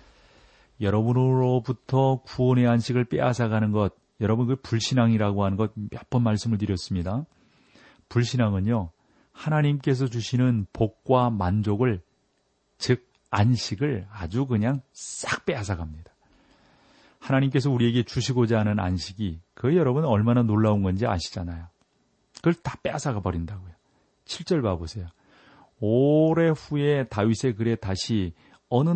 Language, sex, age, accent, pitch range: Korean, male, 40-59, native, 100-130 Hz